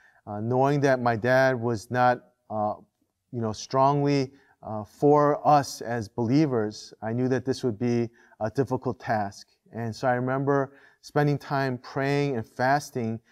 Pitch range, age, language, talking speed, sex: 110-135 Hz, 30-49, English, 155 wpm, male